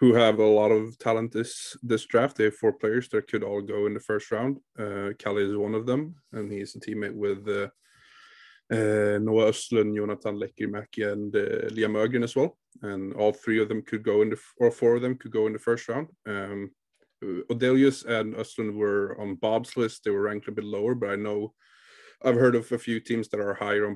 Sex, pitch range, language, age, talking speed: male, 105-120 Hz, English, 30-49, 230 wpm